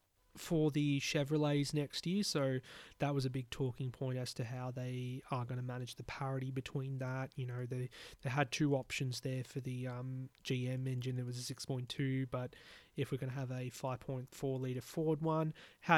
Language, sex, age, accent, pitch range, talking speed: English, male, 20-39, Australian, 125-135 Hz, 200 wpm